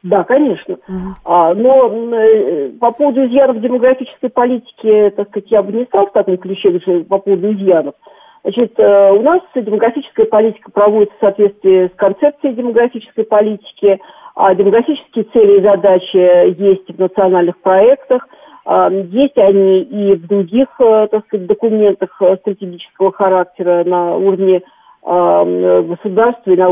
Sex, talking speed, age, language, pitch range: female, 125 wpm, 50-69, Russian, 180-230 Hz